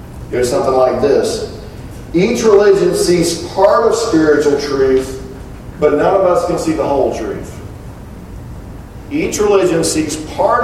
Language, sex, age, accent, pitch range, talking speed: English, male, 40-59, American, 150-195 Hz, 135 wpm